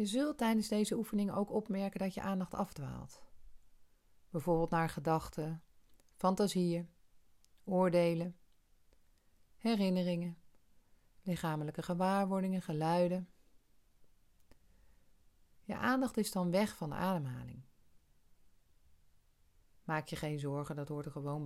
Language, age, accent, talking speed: Dutch, 40-59, Dutch, 100 wpm